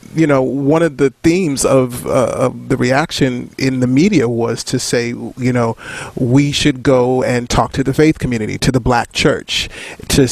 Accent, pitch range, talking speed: American, 115-140 Hz, 190 wpm